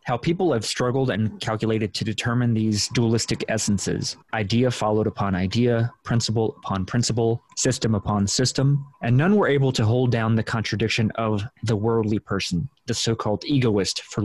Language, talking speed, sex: English, 160 wpm, male